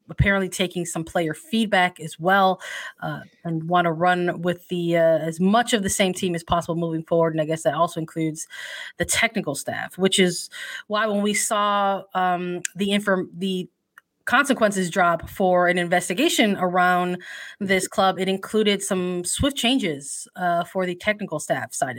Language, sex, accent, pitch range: English, female, American, 175-195 Hz